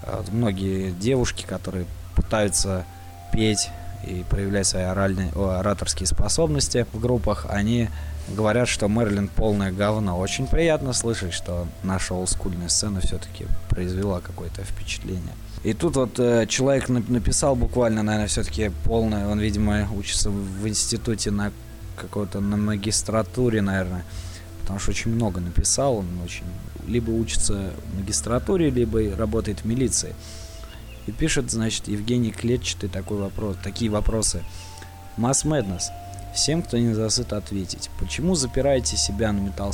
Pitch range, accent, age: 90-110 Hz, native, 20-39